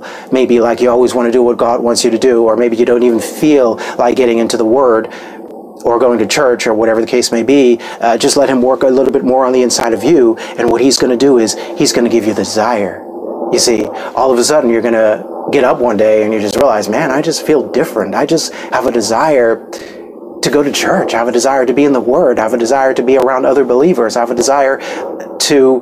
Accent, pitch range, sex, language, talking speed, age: American, 115-135 Hz, male, English, 270 wpm, 30-49